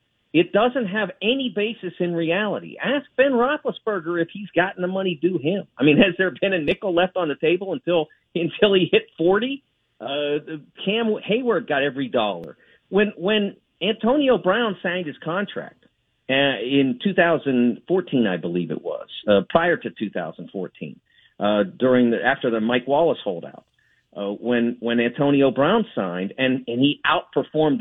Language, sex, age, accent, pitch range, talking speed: English, male, 50-69, American, 145-220 Hz, 160 wpm